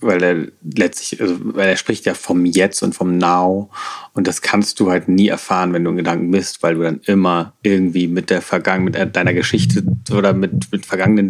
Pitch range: 95-110 Hz